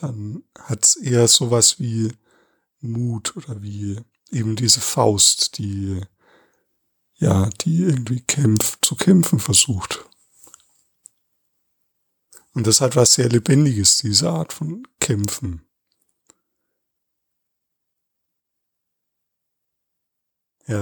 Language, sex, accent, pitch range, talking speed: German, male, German, 115-145 Hz, 85 wpm